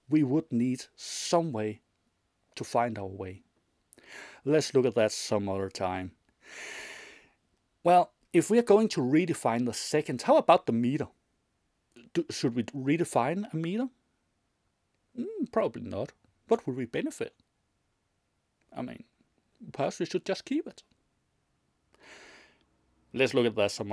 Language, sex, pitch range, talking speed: English, male, 110-150 Hz, 135 wpm